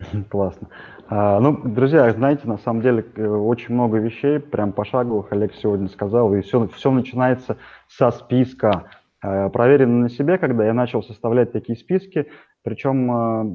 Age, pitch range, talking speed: 20-39, 110-135 Hz, 135 wpm